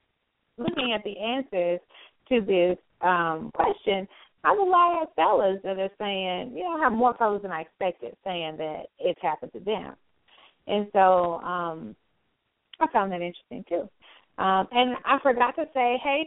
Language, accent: English, American